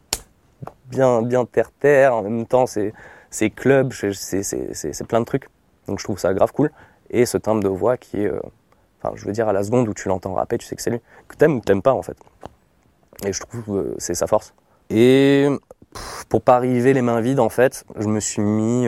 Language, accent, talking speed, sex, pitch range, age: French, French, 235 wpm, male, 100-120 Hz, 20-39